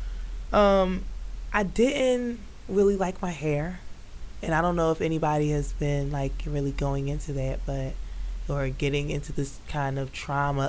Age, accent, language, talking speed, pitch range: 20-39, American, English, 155 wpm, 140-175 Hz